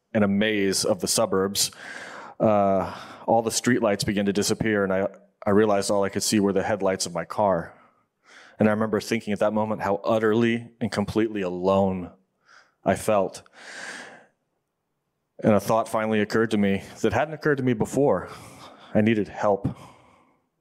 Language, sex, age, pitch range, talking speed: English, male, 30-49, 100-110 Hz, 165 wpm